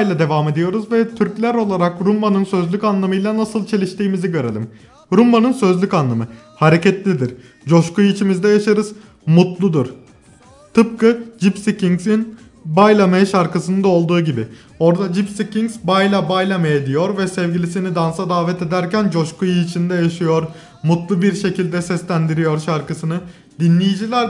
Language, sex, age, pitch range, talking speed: Turkish, male, 30-49, 155-190 Hz, 120 wpm